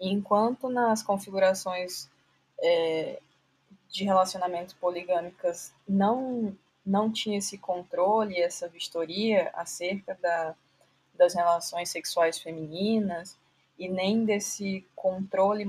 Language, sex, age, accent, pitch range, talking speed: Portuguese, female, 20-39, Brazilian, 180-215 Hz, 90 wpm